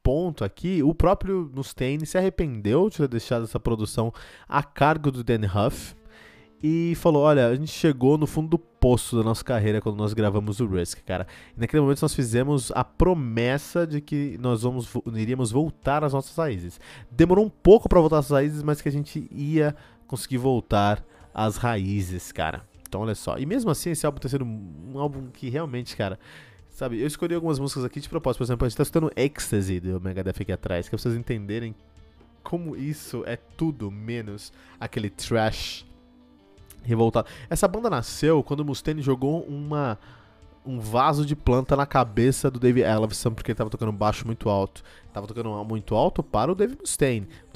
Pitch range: 110-150 Hz